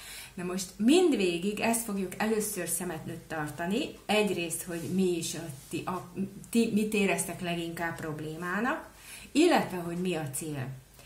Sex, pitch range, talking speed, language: female, 160-205 Hz, 135 wpm, Hungarian